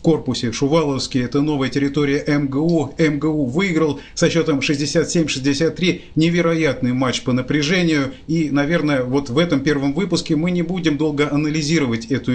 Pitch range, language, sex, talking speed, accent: 130-160 Hz, Russian, male, 135 wpm, native